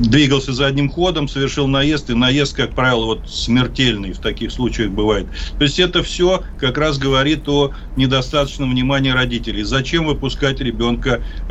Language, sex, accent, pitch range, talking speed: Russian, male, native, 120-145 Hz, 155 wpm